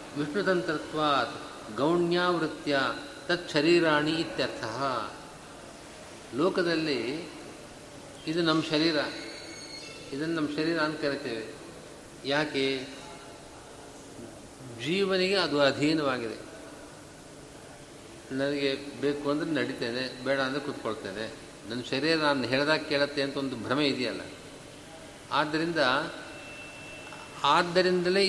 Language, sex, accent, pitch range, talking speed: Kannada, male, native, 140-170 Hz, 80 wpm